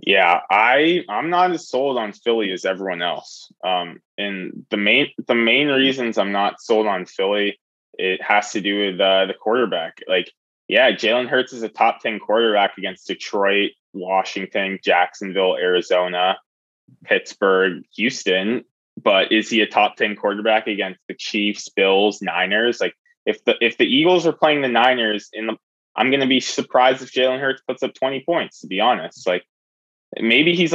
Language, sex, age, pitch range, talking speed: English, male, 20-39, 95-130 Hz, 175 wpm